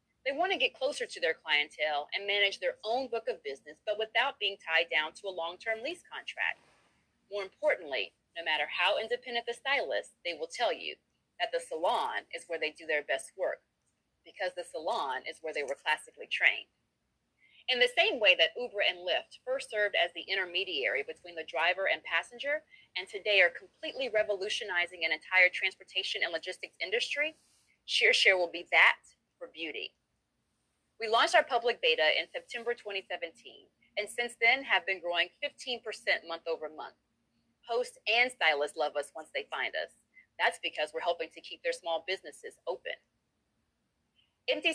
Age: 30-49